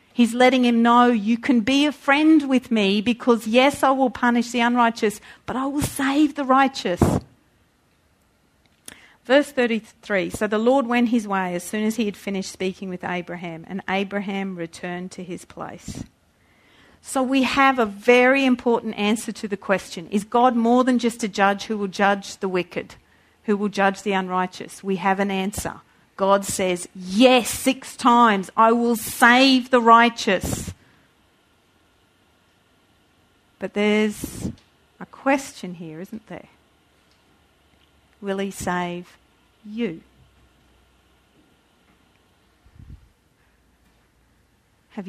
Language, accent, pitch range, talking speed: English, Australian, 185-240 Hz, 135 wpm